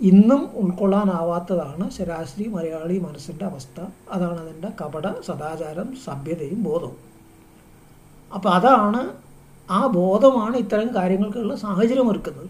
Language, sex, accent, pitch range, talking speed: Malayalam, male, native, 180-215 Hz, 95 wpm